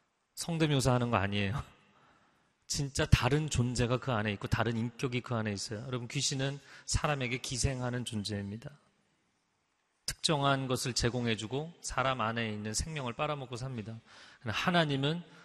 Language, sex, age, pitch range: Korean, male, 30-49, 115-155 Hz